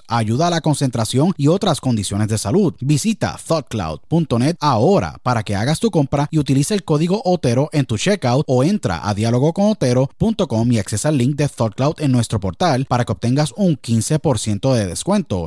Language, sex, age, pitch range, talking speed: Spanish, male, 30-49, 115-160 Hz, 175 wpm